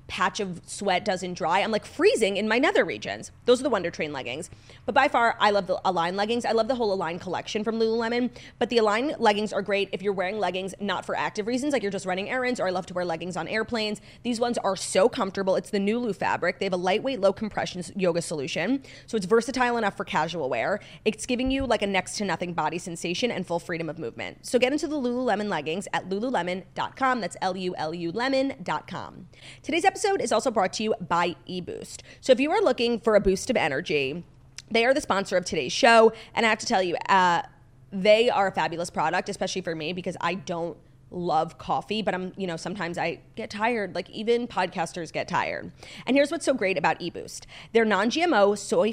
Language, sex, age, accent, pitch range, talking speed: English, female, 20-39, American, 180-230 Hz, 220 wpm